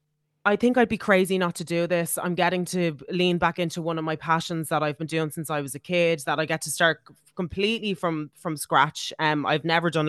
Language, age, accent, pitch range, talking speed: English, 20-39, Irish, 155-185 Hz, 245 wpm